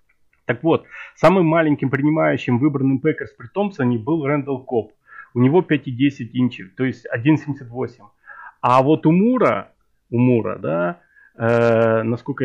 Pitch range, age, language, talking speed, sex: 125-160 Hz, 30-49, Russian, 135 wpm, male